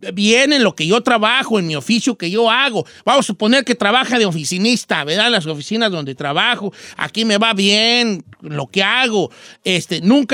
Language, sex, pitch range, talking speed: Spanish, male, 185-245 Hz, 195 wpm